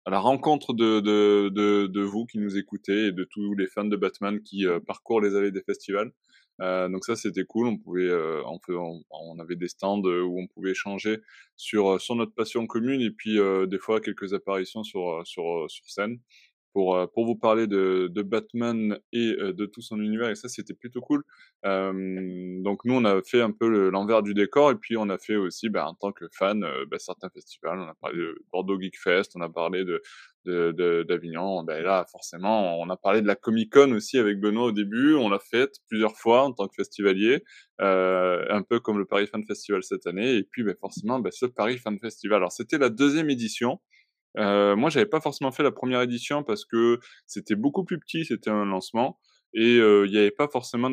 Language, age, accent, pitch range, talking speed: French, 20-39, French, 95-115 Hz, 225 wpm